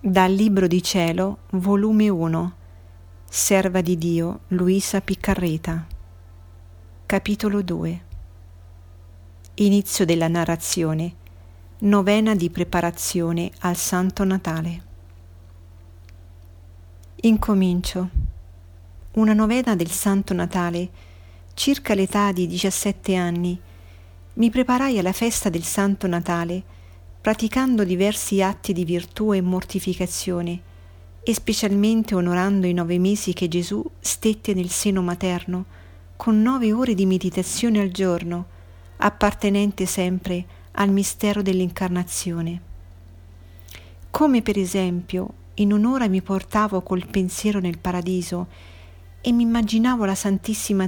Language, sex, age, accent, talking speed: Italian, female, 50-69, native, 105 wpm